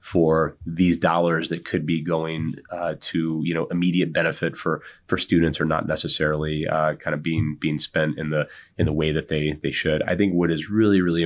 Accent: American